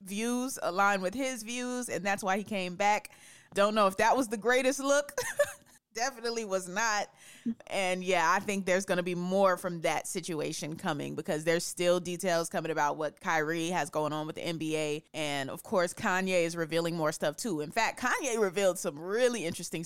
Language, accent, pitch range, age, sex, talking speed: English, American, 170-220 Hz, 30-49, female, 195 wpm